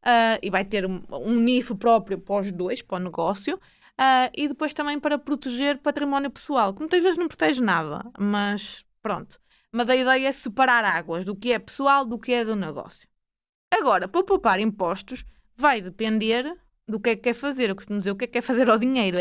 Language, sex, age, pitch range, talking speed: Portuguese, female, 20-39, 210-260 Hz, 210 wpm